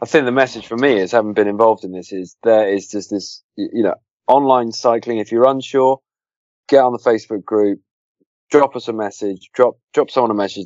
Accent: British